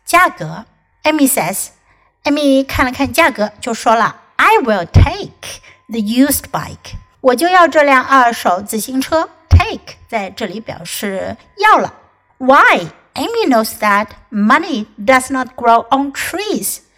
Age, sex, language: 60-79, female, Chinese